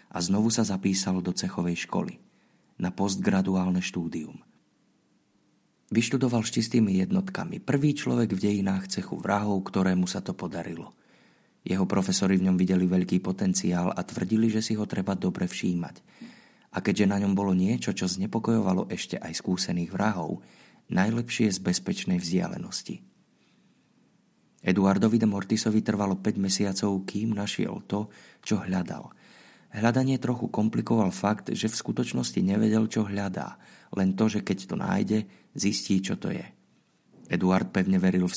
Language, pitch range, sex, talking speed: Slovak, 95-115 Hz, male, 140 wpm